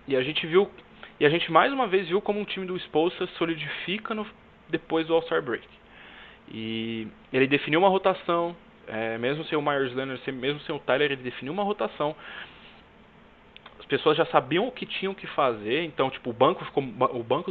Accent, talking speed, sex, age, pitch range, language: Brazilian, 195 wpm, male, 20-39, 125-190 Hz, Portuguese